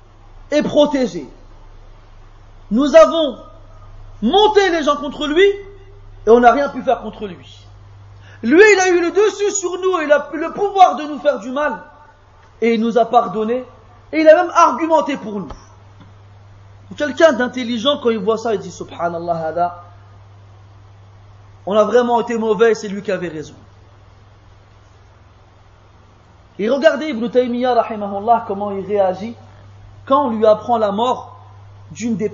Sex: male